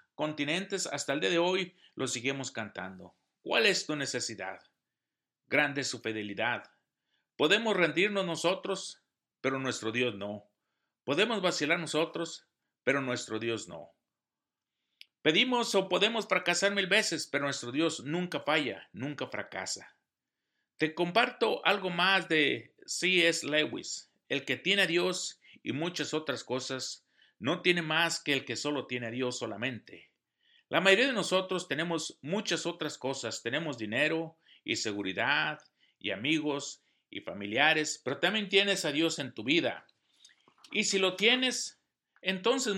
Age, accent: 50-69, Mexican